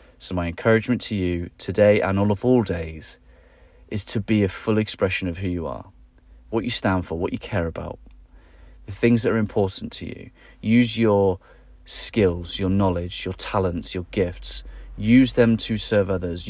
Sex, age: male, 30-49